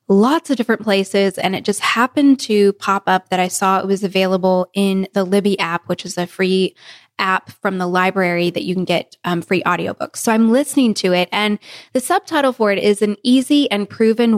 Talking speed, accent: 215 wpm, American